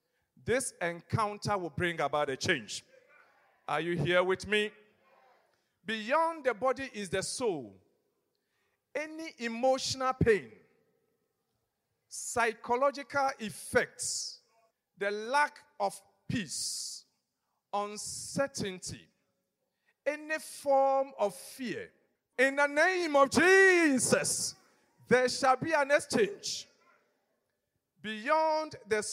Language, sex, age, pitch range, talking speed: English, male, 50-69, 190-275 Hz, 90 wpm